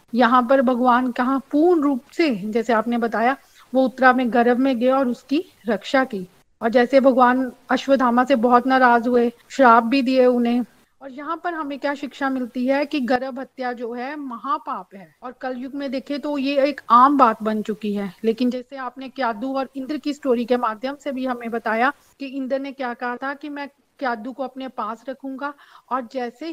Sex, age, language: female, 40-59, Hindi